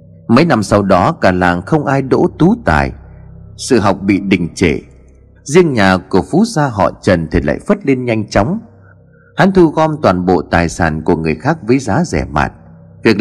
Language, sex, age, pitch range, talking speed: Vietnamese, male, 30-49, 90-135 Hz, 200 wpm